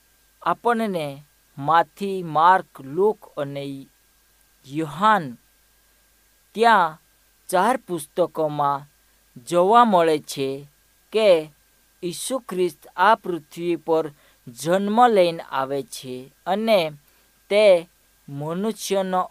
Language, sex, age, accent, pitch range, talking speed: Hindi, female, 50-69, native, 145-195 Hz, 75 wpm